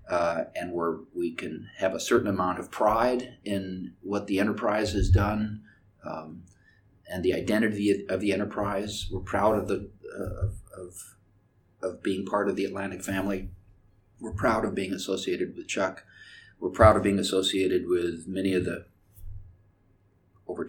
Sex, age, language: male, 40-59, English